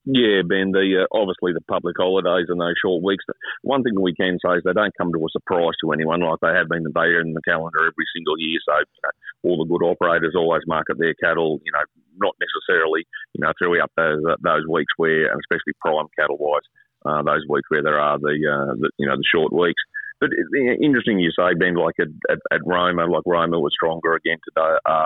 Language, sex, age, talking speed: English, male, 40-59, 235 wpm